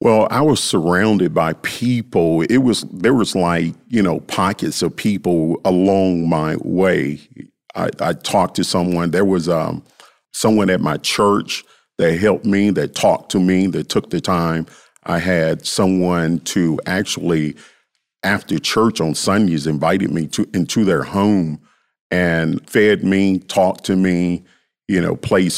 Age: 50-69